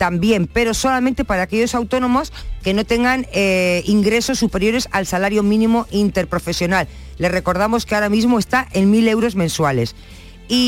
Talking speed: 150 wpm